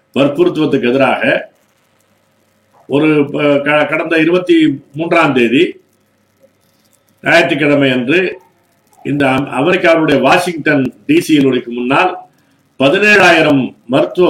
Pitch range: 140-195 Hz